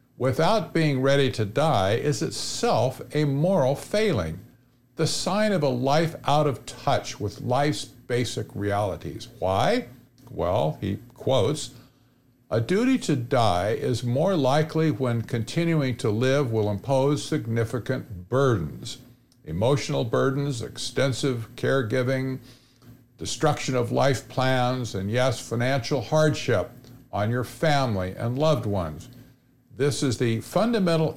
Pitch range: 120-145 Hz